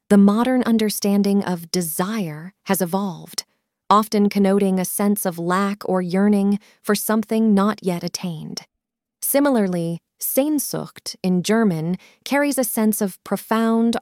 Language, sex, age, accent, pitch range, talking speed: English, female, 30-49, American, 185-220 Hz, 125 wpm